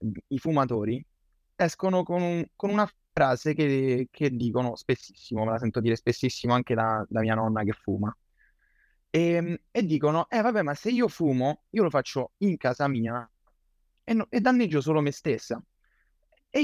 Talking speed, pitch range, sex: 160 wpm, 115-170 Hz, male